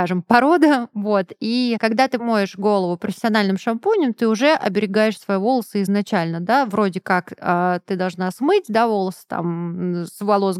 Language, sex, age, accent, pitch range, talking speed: Russian, female, 20-39, native, 190-240 Hz, 145 wpm